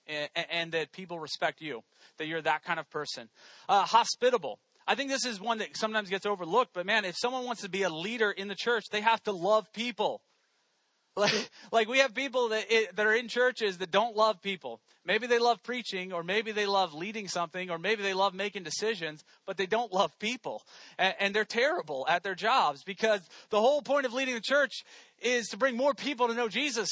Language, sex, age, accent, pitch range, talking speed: English, male, 30-49, American, 195-240 Hz, 220 wpm